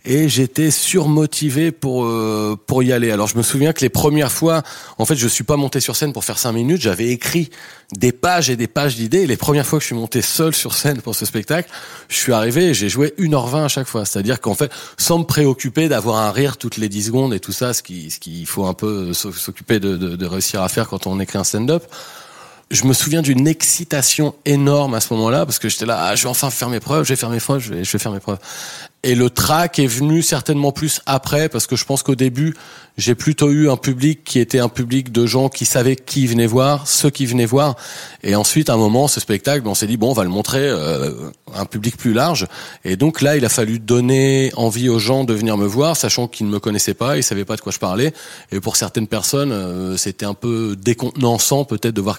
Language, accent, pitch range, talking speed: French, French, 110-145 Hz, 255 wpm